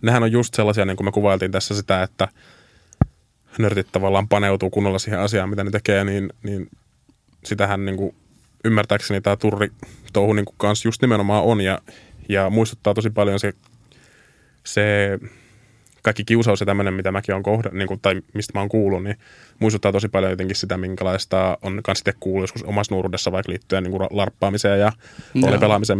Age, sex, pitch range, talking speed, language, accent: 20-39, male, 95-110 Hz, 165 wpm, Finnish, native